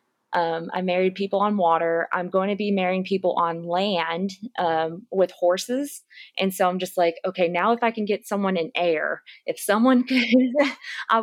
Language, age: English, 20-39